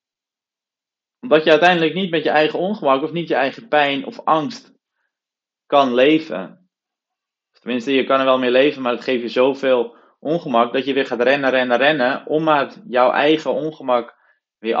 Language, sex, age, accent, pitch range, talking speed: Dutch, male, 20-39, Dutch, 115-150 Hz, 175 wpm